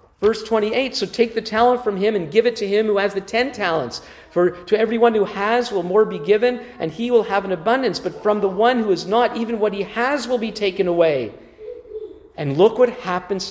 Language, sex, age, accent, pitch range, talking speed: English, male, 50-69, American, 165-235 Hz, 230 wpm